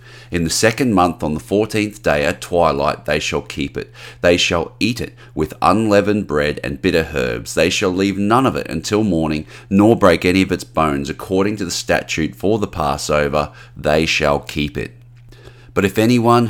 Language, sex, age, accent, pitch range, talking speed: English, male, 30-49, Australian, 80-110 Hz, 190 wpm